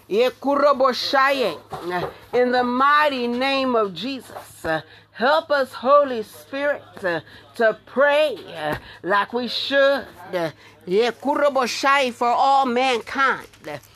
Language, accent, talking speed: English, American, 90 wpm